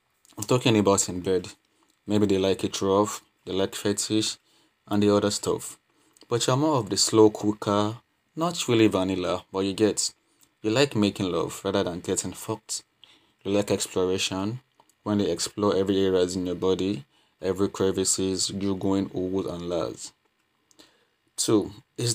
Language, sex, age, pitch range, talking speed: English, male, 20-39, 95-105 Hz, 155 wpm